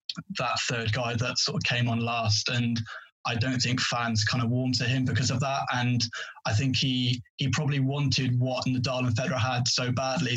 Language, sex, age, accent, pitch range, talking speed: English, male, 20-39, British, 120-130 Hz, 220 wpm